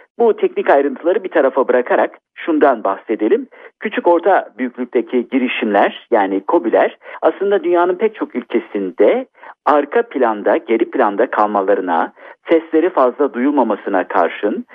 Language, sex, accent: Turkish, male, native